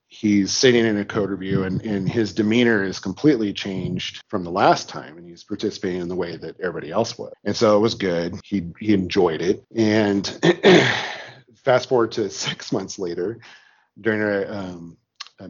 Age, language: 40-59, English